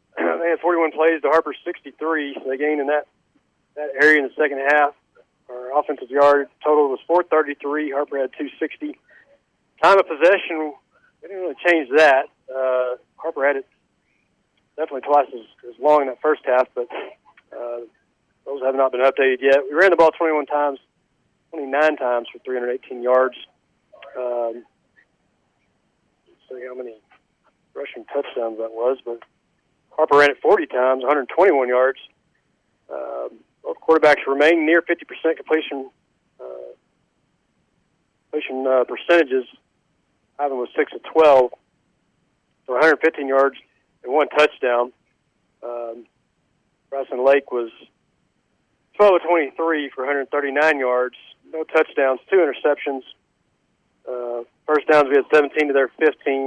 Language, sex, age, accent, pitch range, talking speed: English, male, 40-59, American, 125-155 Hz, 135 wpm